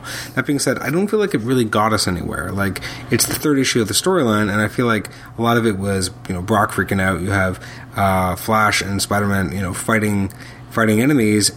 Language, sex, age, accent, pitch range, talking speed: English, male, 30-49, American, 90-115 Hz, 235 wpm